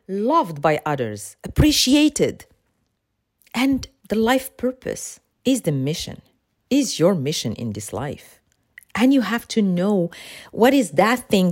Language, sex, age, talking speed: English, female, 40-59, 135 wpm